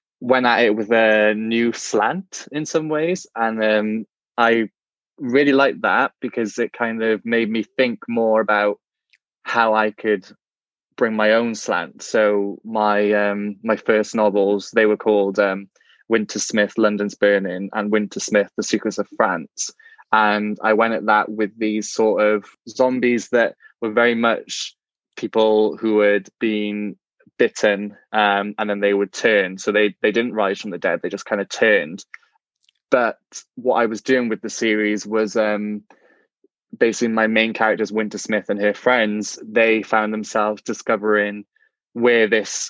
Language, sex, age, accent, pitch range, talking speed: English, male, 20-39, British, 105-115 Hz, 165 wpm